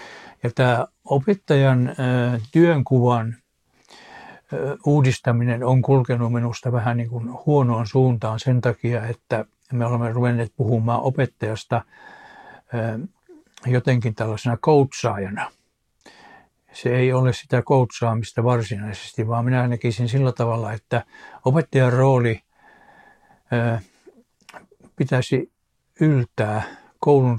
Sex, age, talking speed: male, 60-79, 95 wpm